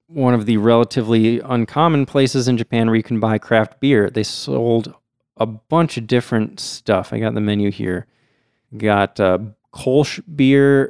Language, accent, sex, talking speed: English, American, male, 170 wpm